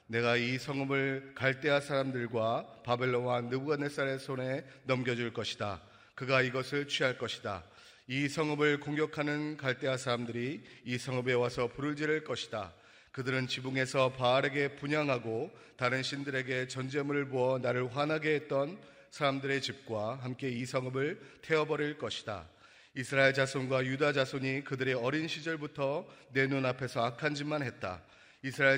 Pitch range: 125-145 Hz